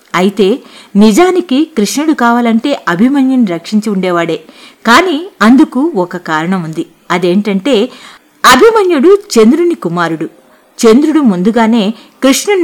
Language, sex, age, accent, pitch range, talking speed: Telugu, female, 50-69, native, 200-300 Hz, 90 wpm